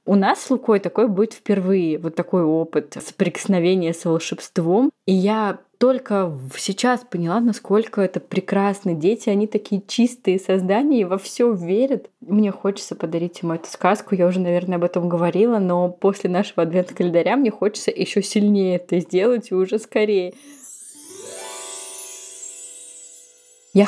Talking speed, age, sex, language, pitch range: 145 wpm, 20-39, female, Russian, 180-220 Hz